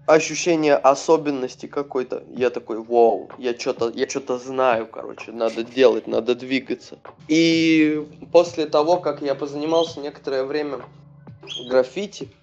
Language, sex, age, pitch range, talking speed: Russian, male, 20-39, 130-155 Hz, 110 wpm